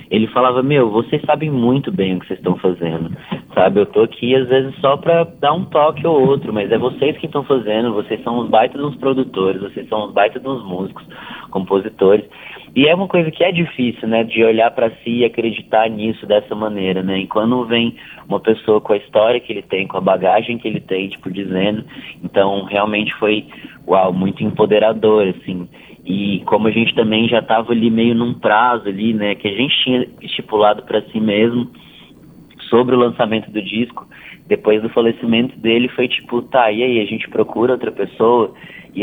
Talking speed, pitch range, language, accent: 200 wpm, 105-125 Hz, Portuguese, Brazilian